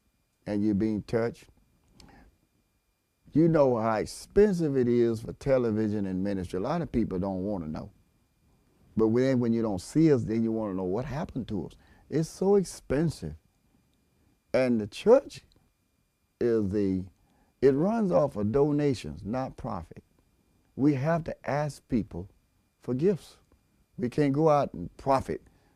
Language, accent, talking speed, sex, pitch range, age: English, American, 150 wpm, male, 95-145 Hz, 50-69